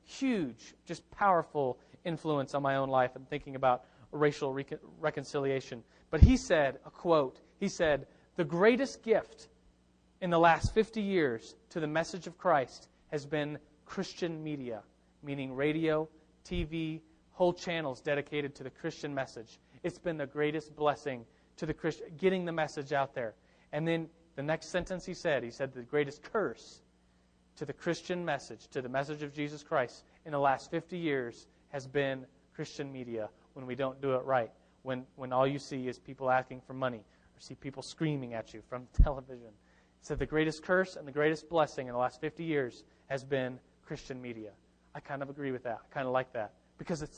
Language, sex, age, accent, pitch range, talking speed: English, male, 30-49, American, 130-165 Hz, 185 wpm